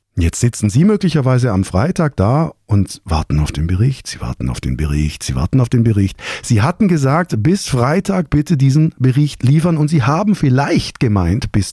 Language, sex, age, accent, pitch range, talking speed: German, male, 50-69, German, 100-145 Hz, 190 wpm